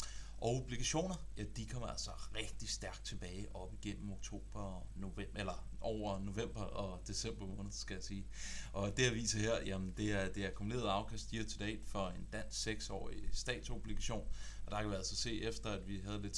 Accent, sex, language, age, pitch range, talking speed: native, male, Danish, 30-49, 95-110 Hz, 200 wpm